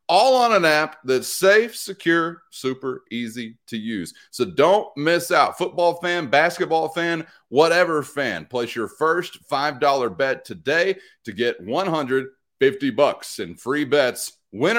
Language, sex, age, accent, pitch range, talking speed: English, male, 30-49, American, 110-165 Hz, 140 wpm